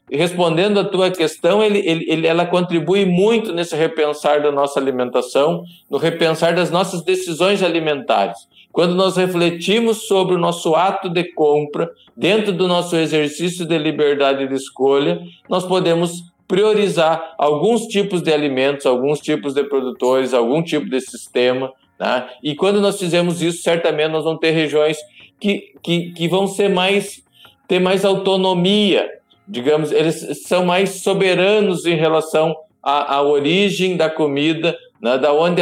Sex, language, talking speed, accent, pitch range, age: male, Portuguese, 145 wpm, Brazilian, 150-185 Hz, 50-69